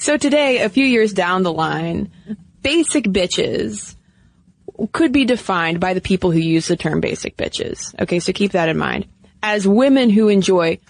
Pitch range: 180-240 Hz